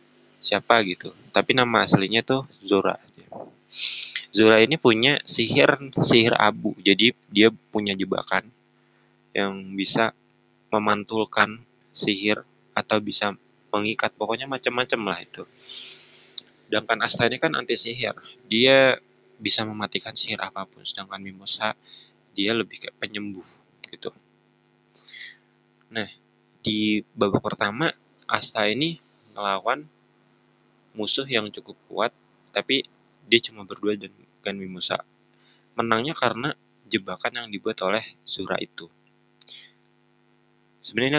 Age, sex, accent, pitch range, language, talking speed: 20-39, male, native, 90-120 Hz, Indonesian, 105 wpm